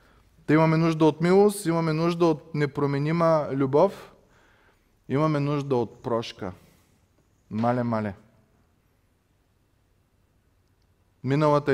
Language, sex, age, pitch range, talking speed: Bulgarian, male, 20-39, 105-145 Hz, 80 wpm